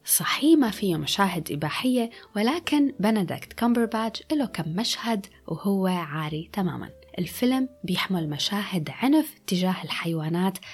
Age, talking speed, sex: 20-39, 110 wpm, female